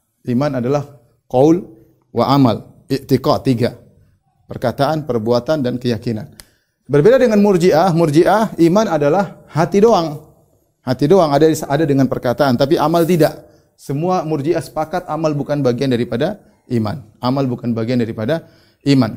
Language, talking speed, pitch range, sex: Indonesian, 130 wpm, 125-160 Hz, male